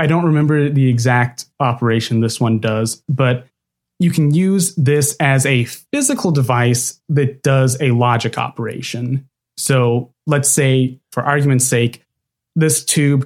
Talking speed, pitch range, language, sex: 140 wpm, 125-145 Hz, English, male